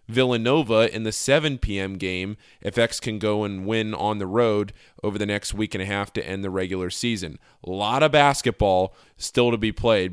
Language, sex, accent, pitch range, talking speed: English, male, American, 100-125 Hz, 205 wpm